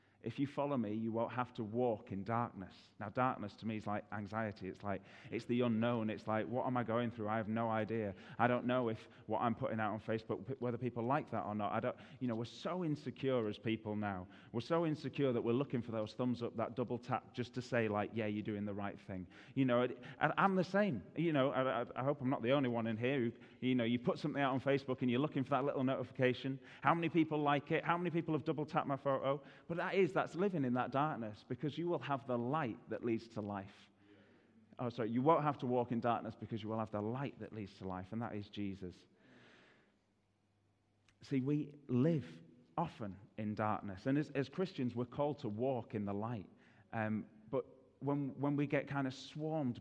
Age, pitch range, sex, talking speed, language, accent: 30-49, 110-135 Hz, male, 240 wpm, English, British